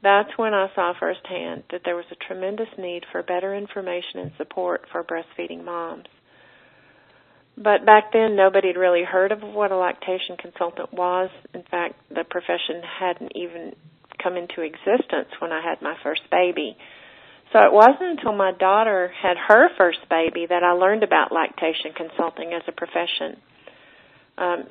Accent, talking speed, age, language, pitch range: American, 165 wpm, 40-59, English, 175-195 Hz